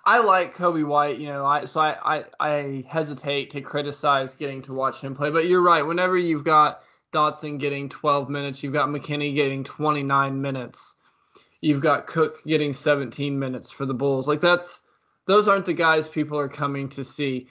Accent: American